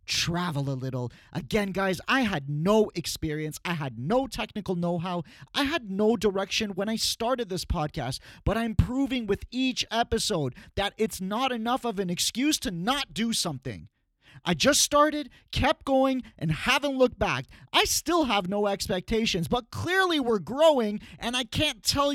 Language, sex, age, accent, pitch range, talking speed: English, male, 30-49, American, 195-275 Hz, 170 wpm